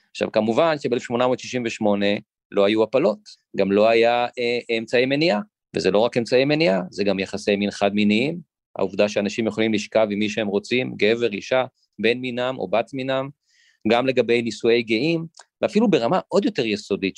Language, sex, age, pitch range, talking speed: Hebrew, male, 40-59, 105-150 Hz, 160 wpm